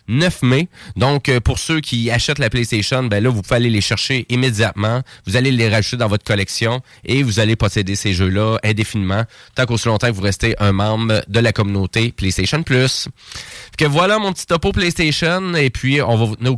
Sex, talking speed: male, 205 wpm